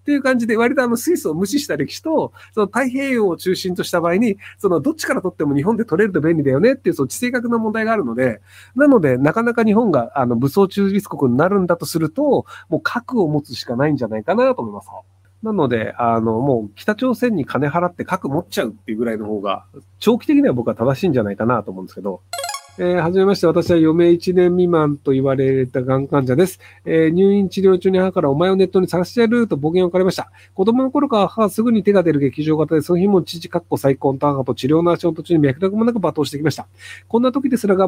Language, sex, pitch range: Japanese, male, 140-210 Hz